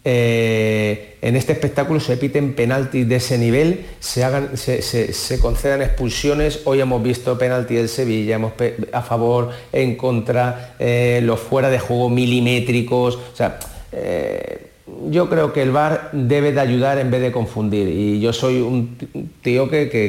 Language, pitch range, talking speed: Spanish, 115-145 Hz, 170 wpm